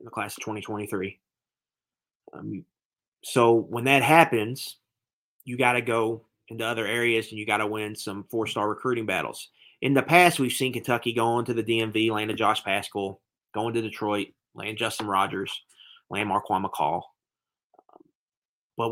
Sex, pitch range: male, 110-125 Hz